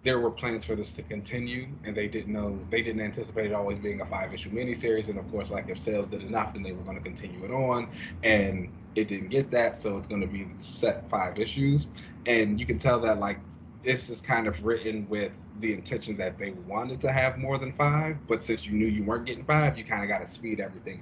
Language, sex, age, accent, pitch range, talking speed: English, male, 20-39, American, 100-115 Hz, 250 wpm